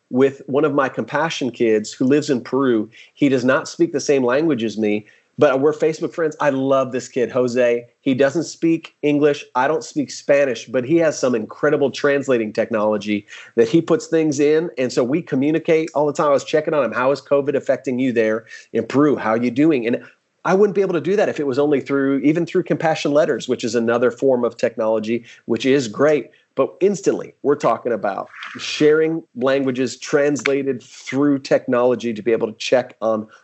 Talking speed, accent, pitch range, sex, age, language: 205 wpm, American, 120-150 Hz, male, 30-49, English